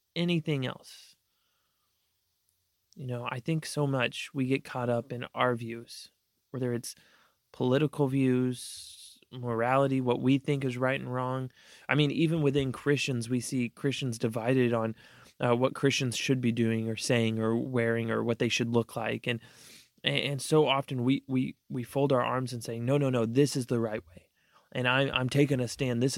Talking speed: 185 wpm